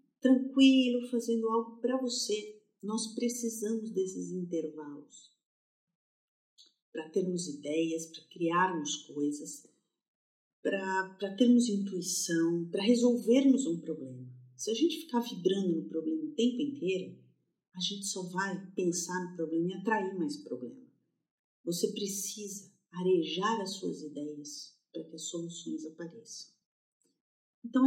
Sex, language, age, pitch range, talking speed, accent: female, Portuguese, 50-69, 175-260 Hz, 120 wpm, Brazilian